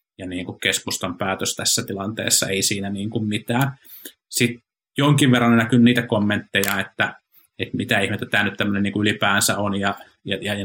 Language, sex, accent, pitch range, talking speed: Finnish, male, native, 105-125 Hz, 180 wpm